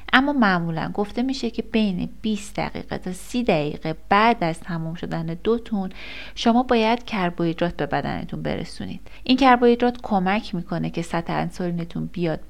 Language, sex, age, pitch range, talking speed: Persian, female, 30-49, 175-220 Hz, 145 wpm